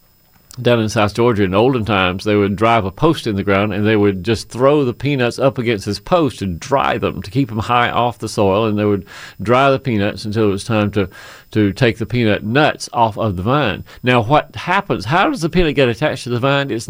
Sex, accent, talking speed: male, American, 245 wpm